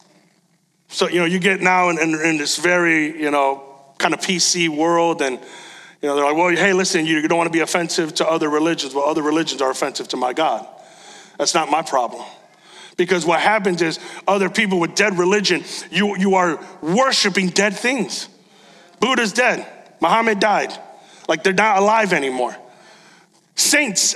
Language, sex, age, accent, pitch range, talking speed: English, male, 30-49, American, 190-275 Hz, 175 wpm